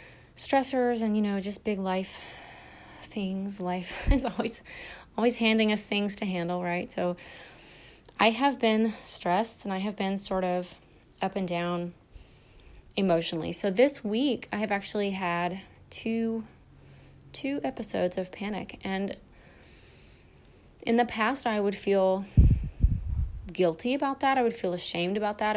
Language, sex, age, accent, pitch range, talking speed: English, female, 20-39, American, 175-225 Hz, 145 wpm